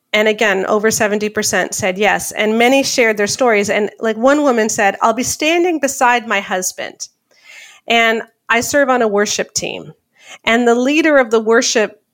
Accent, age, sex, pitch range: American, 40-59, female, 210-255 Hz